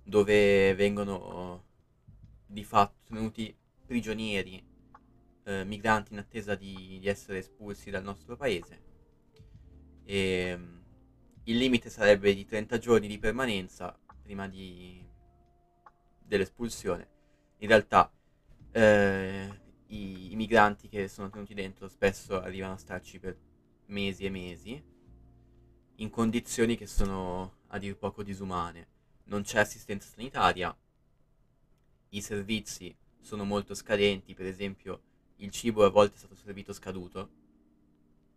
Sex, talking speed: male, 115 wpm